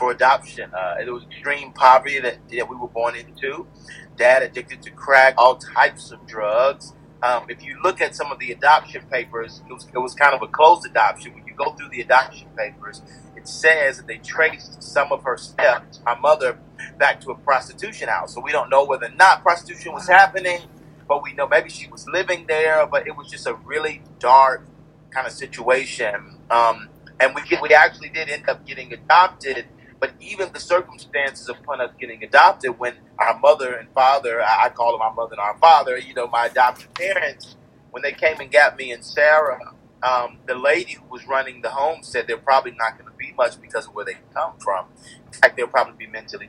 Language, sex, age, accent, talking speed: English, male, 30-49, American, 210 wpm